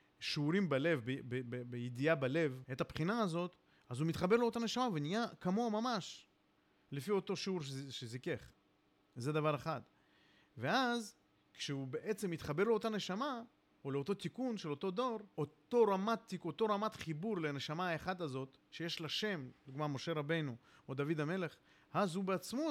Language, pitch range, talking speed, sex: Hebrew, 140-205 Hz, 155 wpm, male